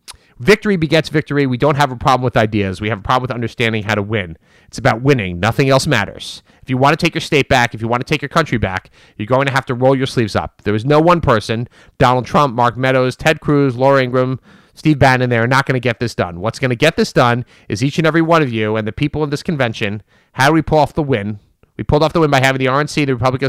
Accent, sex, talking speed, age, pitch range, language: American, male, 280 wpm, 30-49, 115-150 Hz, English